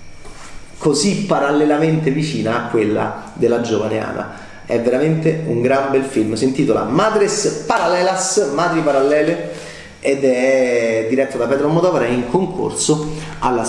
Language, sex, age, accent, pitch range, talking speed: Italian, male, 30-49, native, 115-165 Hz, 125 wpm